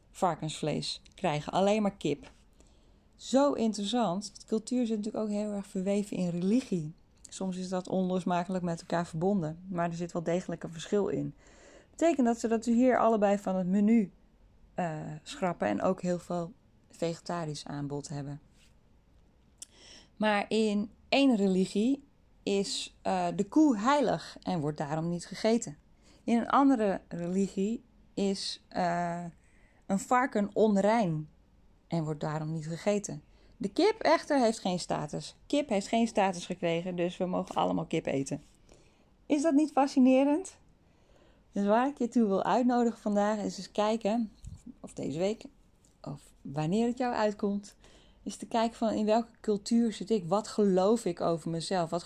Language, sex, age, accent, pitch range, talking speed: Dutch, female, 10-29, Dutch, 170-225 Hz, 155 wpm